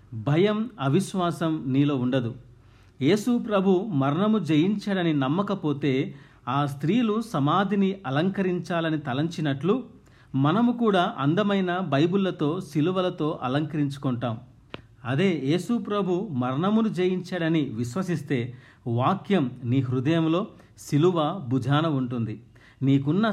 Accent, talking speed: native, 80 wpm